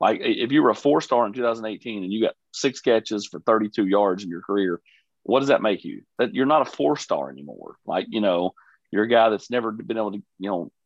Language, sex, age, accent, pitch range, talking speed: English, male, 40-59, American, 105-130 Hz, 240 wpm